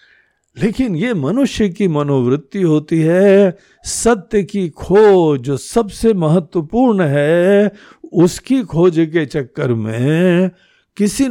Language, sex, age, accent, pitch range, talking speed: Hindi, male, 60-79, native, 130-200 Hz, 105 wpm